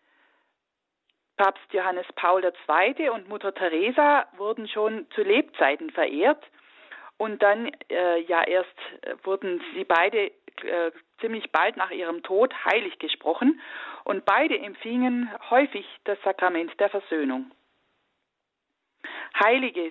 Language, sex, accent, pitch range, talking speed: German, female, German, 180-275 Hz, 110 wpm